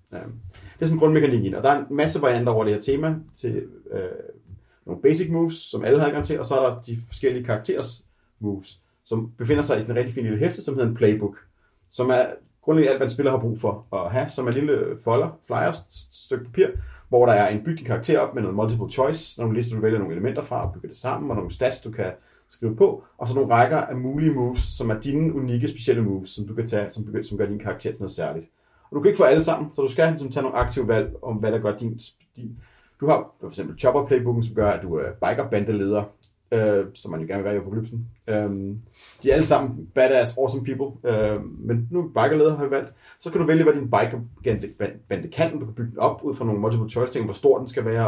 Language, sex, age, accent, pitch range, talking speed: Danish, male, 30-49, native, 105-145 Hz, 245 wpm